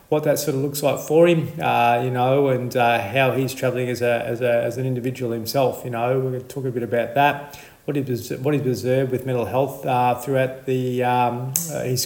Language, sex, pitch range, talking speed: English, male, 125-145 Hz, 250 wpm